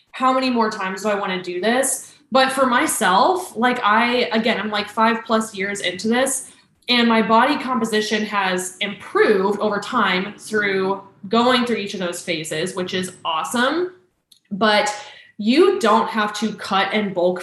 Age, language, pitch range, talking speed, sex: 10-29, English, 195-245 Hz, 170 wpm, female